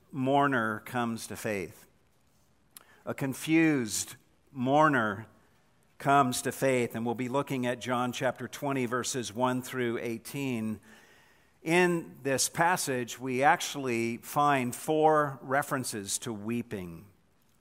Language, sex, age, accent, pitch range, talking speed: English, male, 50-69, American, 120-155 Hz, 110 wpm